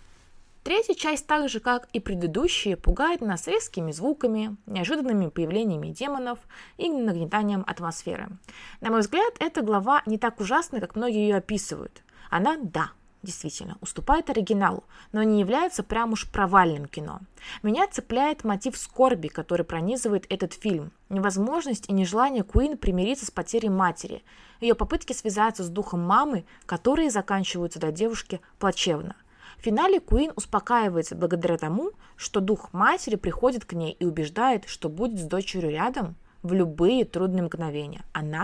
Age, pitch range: 20-39, 175-245 Hz